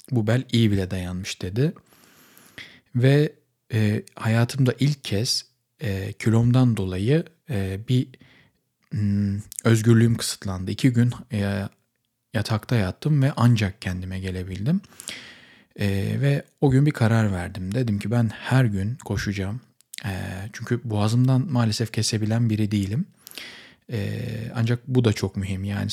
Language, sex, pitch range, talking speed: Turkish, male, 100-125 Hz, 125 wpm